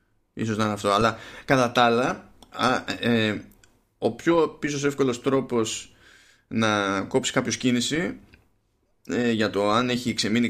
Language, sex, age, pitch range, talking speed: Greek, male, 20-39, 105-125 Hz, 150 wpm